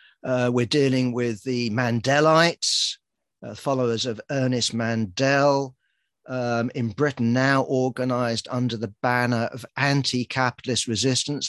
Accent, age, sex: British, 50-69, male